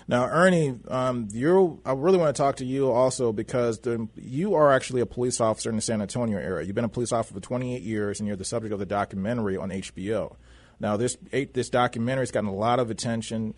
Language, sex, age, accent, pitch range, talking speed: English, male, 30-49, American, 105-120 Hz, 235 wpm